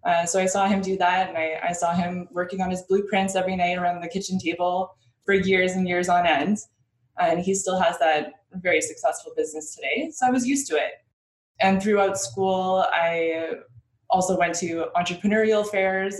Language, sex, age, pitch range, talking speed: English, female, 20-39, 155-195 Hz, 195 wpm